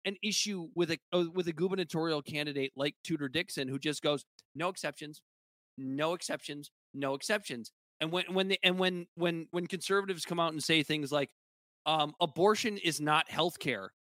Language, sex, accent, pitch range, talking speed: English, male, American, 145-195 Hz, 170 wpm